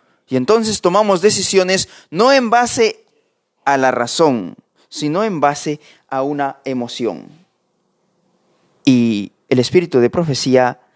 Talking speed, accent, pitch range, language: 115 wpm, Mexican, 150-230 Hz, Spanish